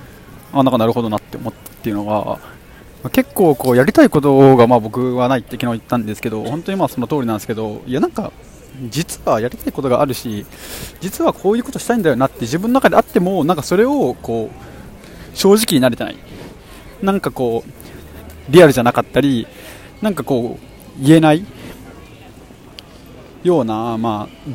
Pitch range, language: 125-195 Hz, Japanese